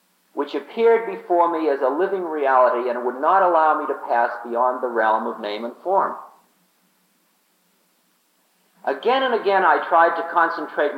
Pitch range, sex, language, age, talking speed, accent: 135-210 Hz, male, English, 50-69, 160 wpm, American